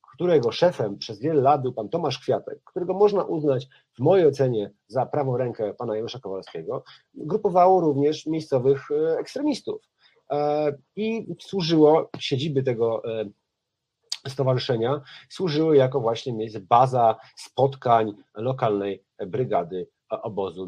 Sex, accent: male, native